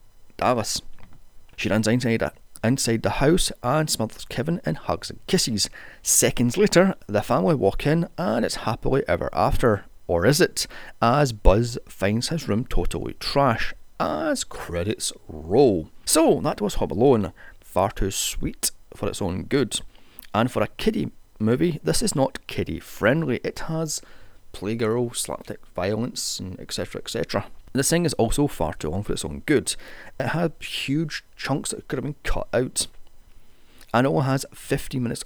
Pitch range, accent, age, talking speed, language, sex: 105-140 Hz, British, 30-49, 160 wpm, English, male